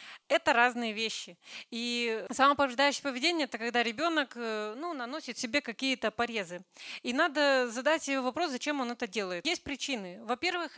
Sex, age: female, 30-49